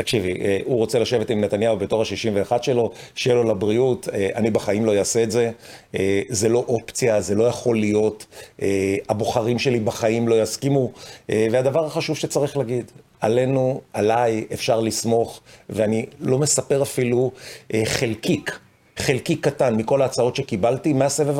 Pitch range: 110-145 Hz